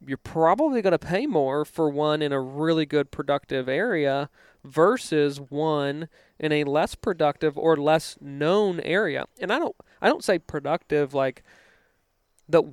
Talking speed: 155 wpm